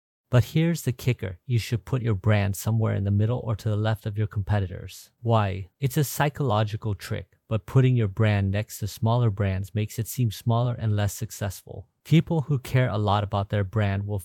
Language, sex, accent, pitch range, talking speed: English, male, American, 100-120 Hz, 205 wpm